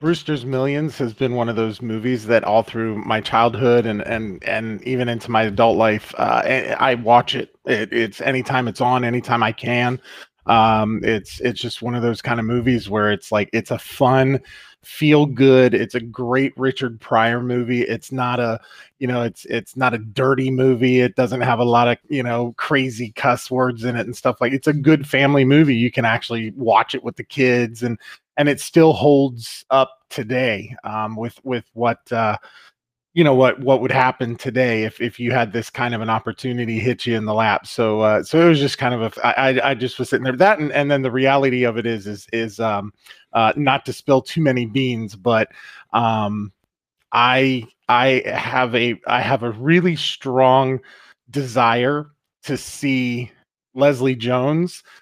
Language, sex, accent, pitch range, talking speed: English, male, American, 115-130 Hz, 200 wpm